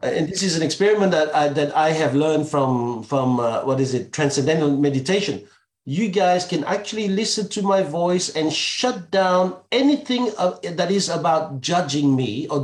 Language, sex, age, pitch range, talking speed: English, male, 50-69, 165-225 Hz, 170 wpm